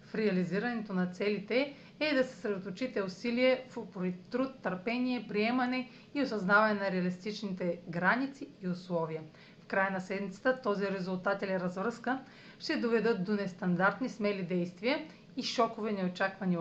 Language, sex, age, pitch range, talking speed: Bulgarian, female, 40-59, 185-230 Hz, 140 wpm